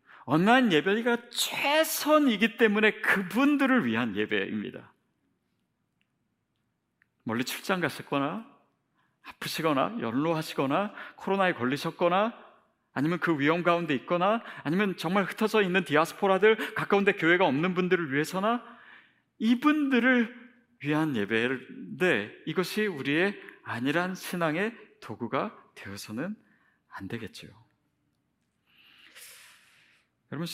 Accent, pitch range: native, 150-215 Hz